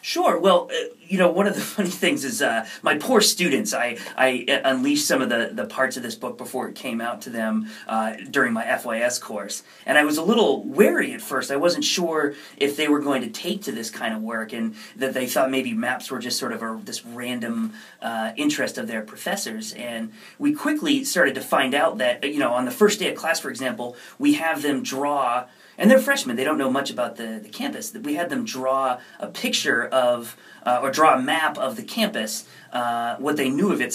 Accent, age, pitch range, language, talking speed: American, 30-49, 125-205 Hz, English, 235 wpm